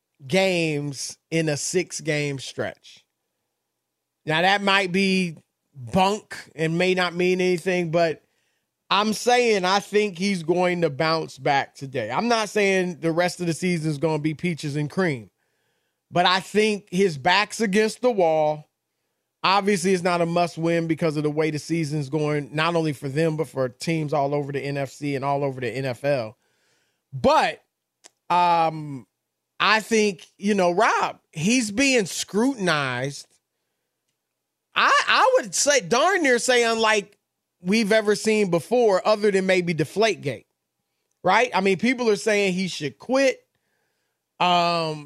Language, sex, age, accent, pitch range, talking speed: English, male, 30-49, American, 155-215 Hz, 155 wpm